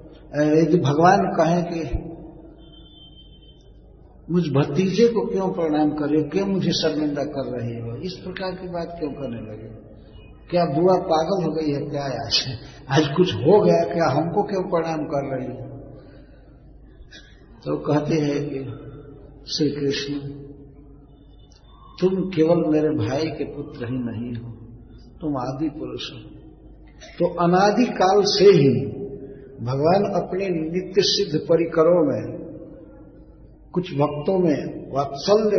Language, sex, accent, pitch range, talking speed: Hindi, male, native, 145-185 Hz, 135 wpm